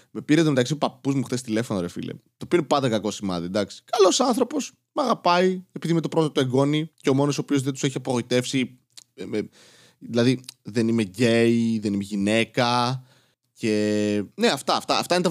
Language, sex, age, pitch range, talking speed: Greek, male, 20-39, 120-165 Hz, 195 wpm